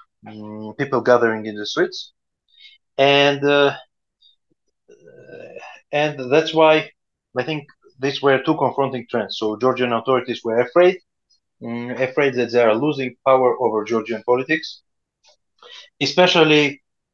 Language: English